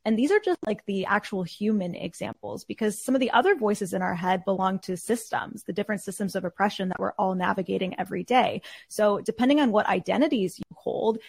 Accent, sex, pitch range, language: American, female, 185-230 Hz, English